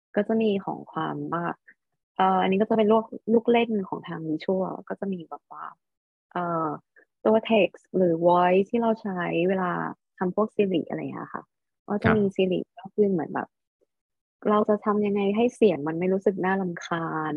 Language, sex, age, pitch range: Thai, female, 20-39, 165-210 Hz